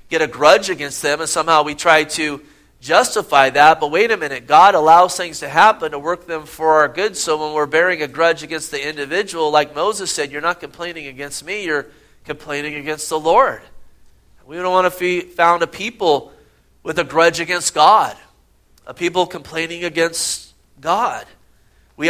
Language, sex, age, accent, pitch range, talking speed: English, male, 40-59, American, 150-180 Hz, 180 wpm